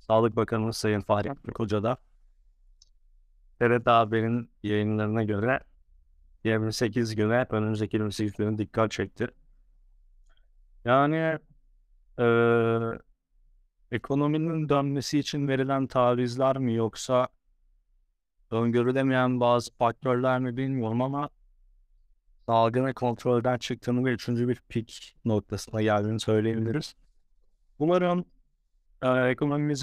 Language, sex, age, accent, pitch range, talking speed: Turkish, male, 30-49, native, 100-125 Hz, 90 wpm